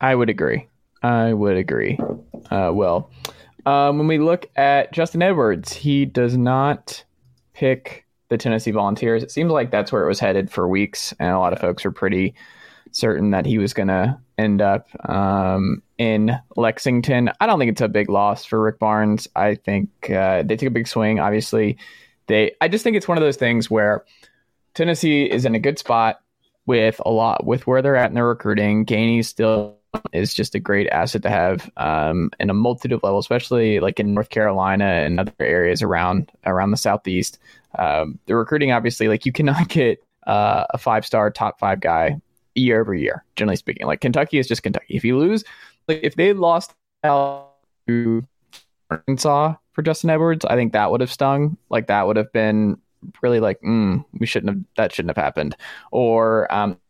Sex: male